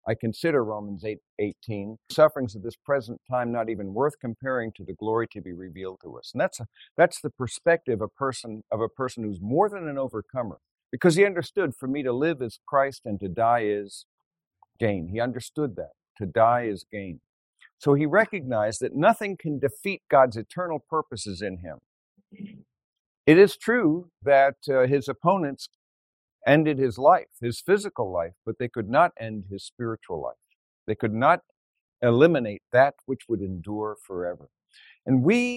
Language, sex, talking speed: English, male, 175 wpm